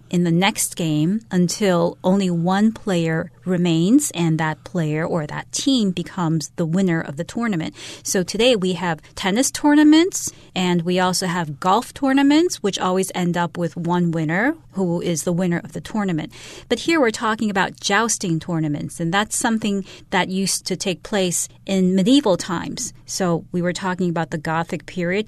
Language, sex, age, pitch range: Chinese, female, 40-59, 170-205 Hz